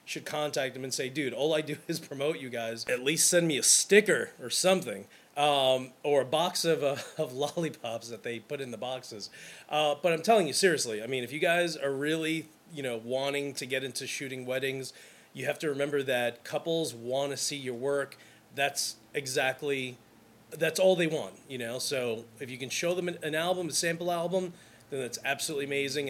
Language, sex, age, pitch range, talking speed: English, male, 30-49, 130-180 Hz, 205 wpm